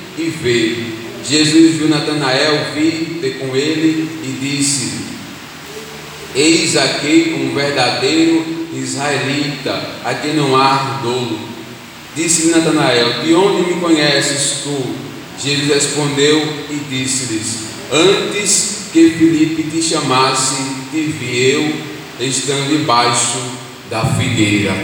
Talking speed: 105 wpm